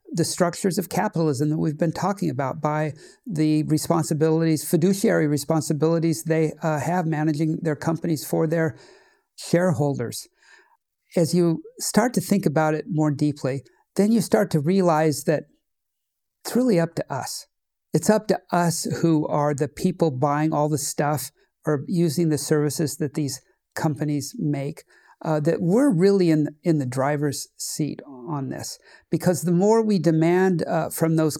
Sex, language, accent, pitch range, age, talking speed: male, English, American, 150-175 Hz, 60-79, 155 wpm